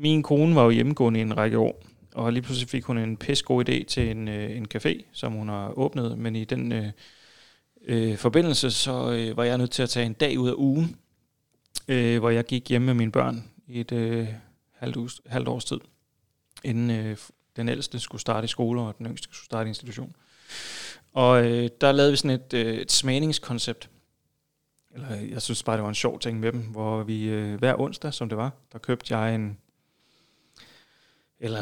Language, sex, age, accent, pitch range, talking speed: English, male, 30-49, Danish, 110-125 Hz, 200 wpm